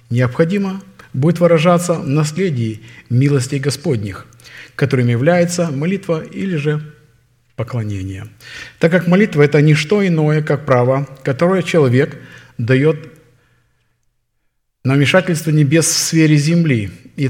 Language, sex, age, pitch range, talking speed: Russian, male, 50-69, 130-170 Hz, 115 wpm